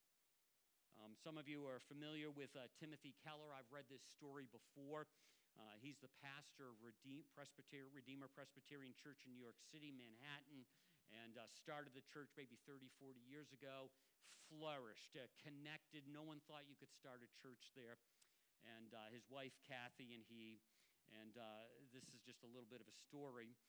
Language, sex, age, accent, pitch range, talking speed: English, male, 50-69, American, 135-175 Hz, 175 wpm